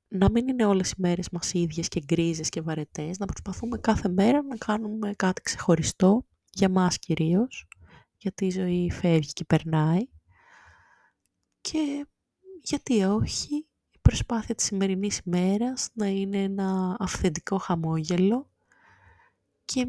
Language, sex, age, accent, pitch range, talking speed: Greek, female, 20-39, native, 160-215 Hz, 130 wpm